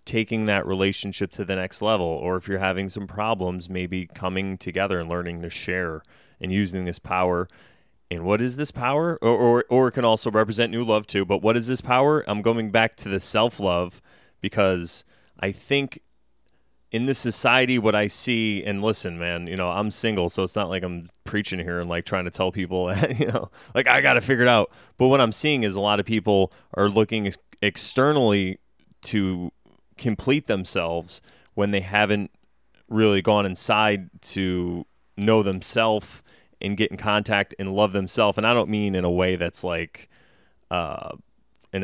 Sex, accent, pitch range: male, American, 90-110 Hz